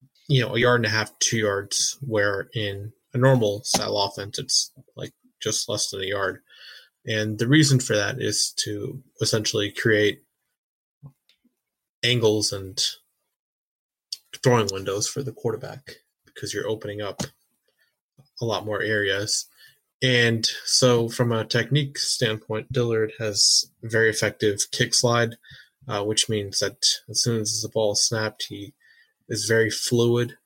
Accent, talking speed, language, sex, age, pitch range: American, 145 wpm, English, male, 20-39, 110-135 Hz